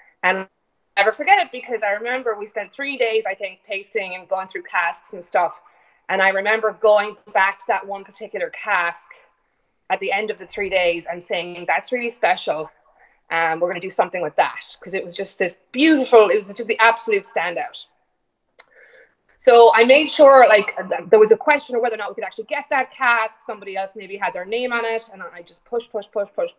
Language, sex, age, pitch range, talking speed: English, female, 20-39, 195-235 Hz, 225 wpm